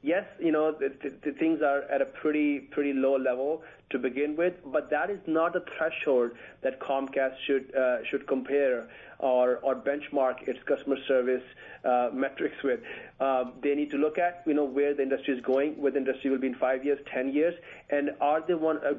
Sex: male